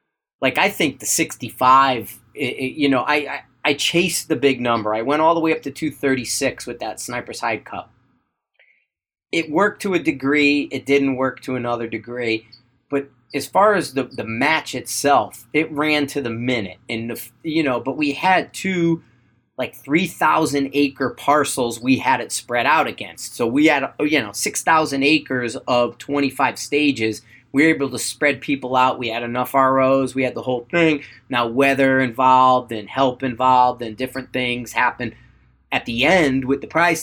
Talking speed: 180 wpm